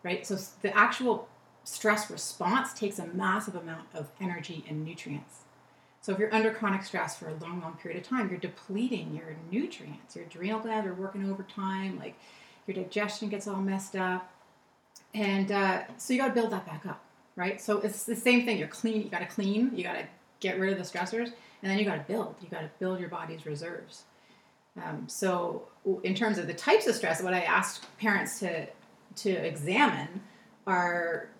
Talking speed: 200 wpm